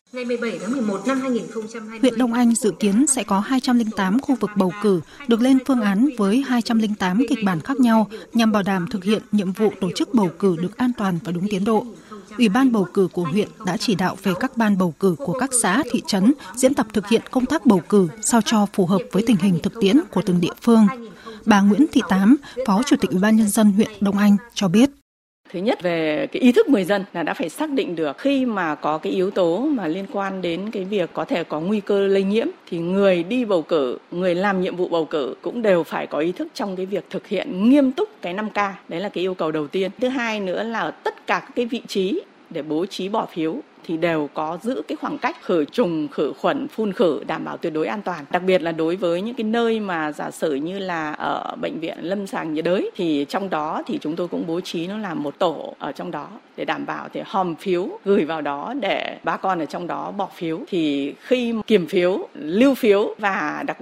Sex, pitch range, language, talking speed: female, 180-235 Hz, Vietnamese, 240 wpm